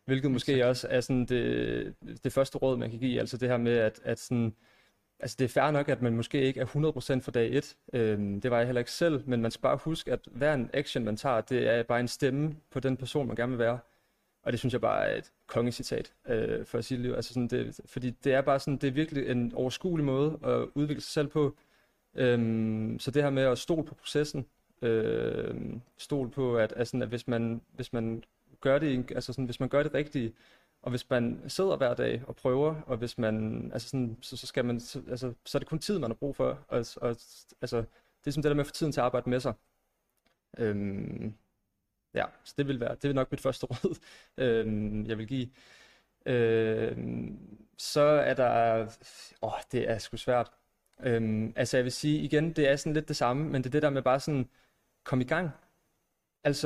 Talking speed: 230 wpm